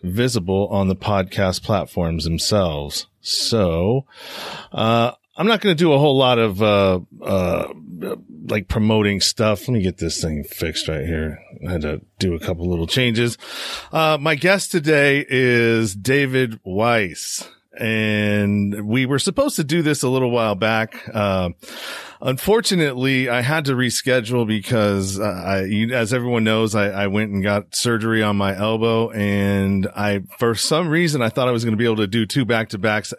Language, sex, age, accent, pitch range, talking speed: English, male, 40-59, American, 100-125 Hz, 175 wpm